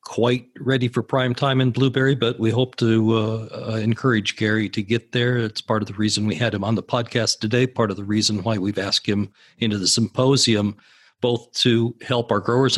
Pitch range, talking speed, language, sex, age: 110-135 Hz, 215 wpm, English, male, 50-69